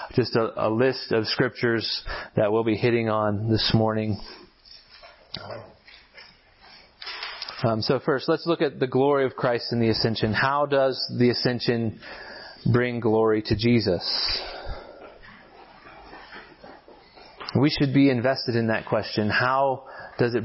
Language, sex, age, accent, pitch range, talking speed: English, male, 30-49, American, 115-135 Hz, 130 wpm